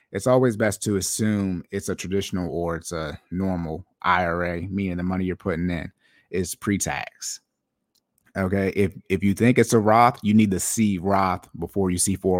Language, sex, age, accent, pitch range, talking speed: English, male, 30-49, American, 90-105 Hz, 180 wpm